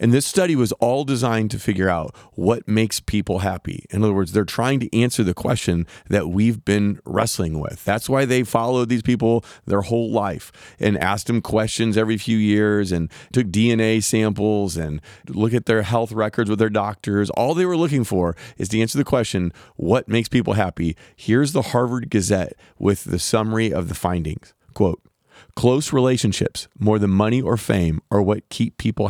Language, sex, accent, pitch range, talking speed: English, male, American, 95-120 Hz, 190 wpm